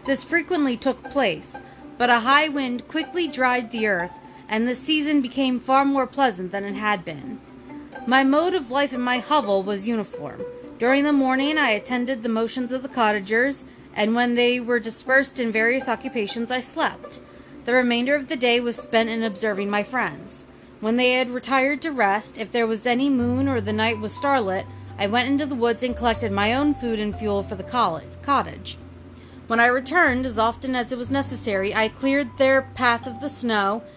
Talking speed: 195 wpm